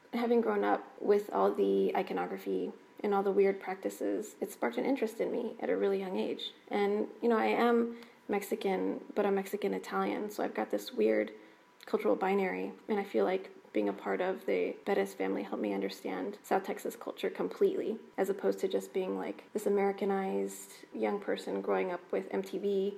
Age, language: 20-39, English